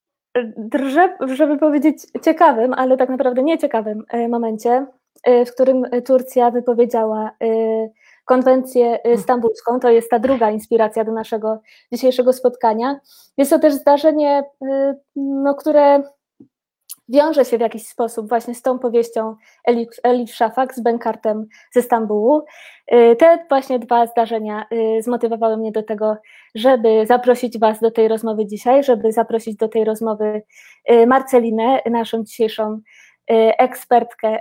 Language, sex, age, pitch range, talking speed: Polish, female, 20-39, 230-280 Hz, 120 wpm